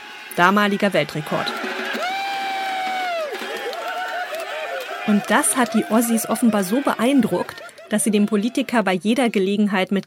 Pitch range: 190-240 Hz